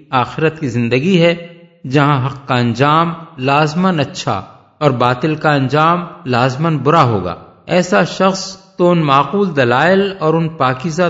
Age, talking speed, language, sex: 50-69, 140 wpm, Urdu, male